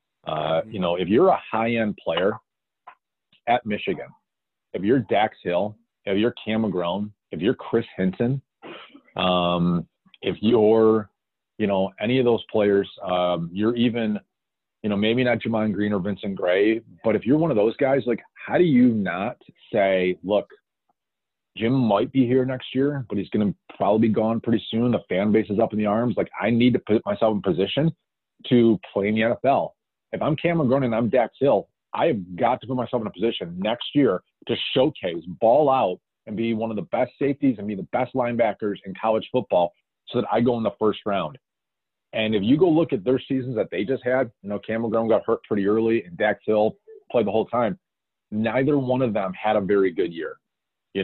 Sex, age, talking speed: male, 40-59, 205 wpm